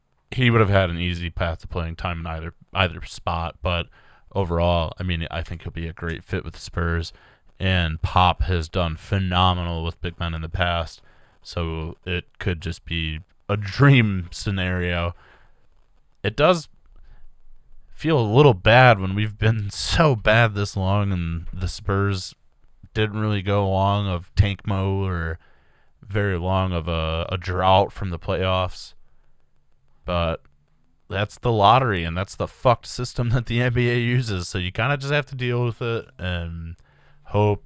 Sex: male